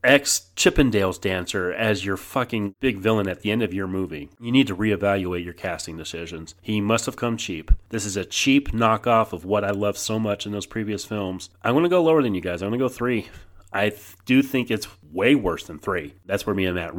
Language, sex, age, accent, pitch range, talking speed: English, male, 30-49, American, 95-140 Hz, 240 wpm